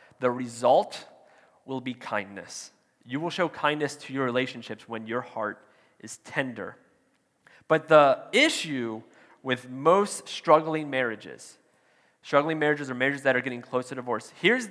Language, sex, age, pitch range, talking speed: English, male, 30-49, 130-165 Hz, 145 wpm